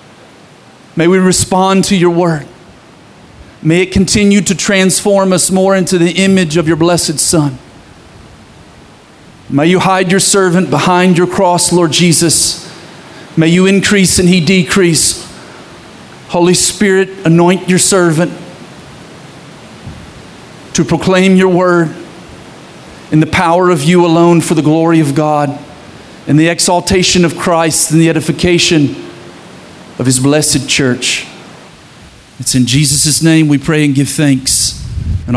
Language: English